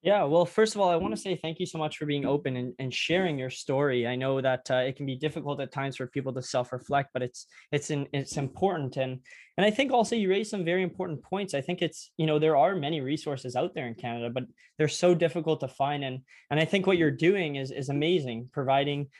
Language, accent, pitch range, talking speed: English, American, 135-165 Hz, 260 wpm